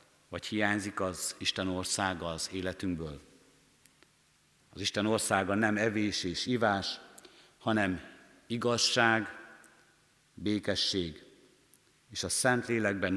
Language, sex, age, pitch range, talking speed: Hungarian, male, 60-79, 90-115 Hz, 95 wpm